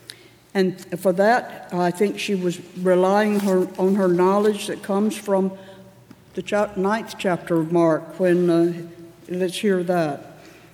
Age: 60-79